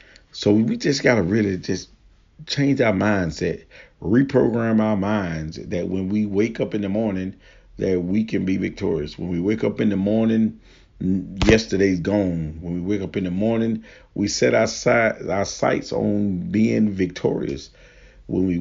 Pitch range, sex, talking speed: 95-110 Hz, male, 170 wpm